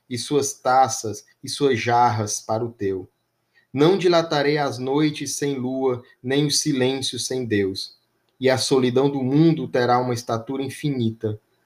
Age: 20-39